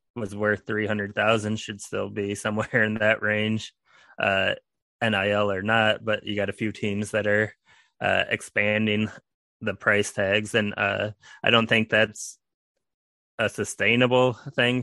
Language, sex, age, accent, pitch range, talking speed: English, male, 20-39, American, 105-110 Hz, 145 wpm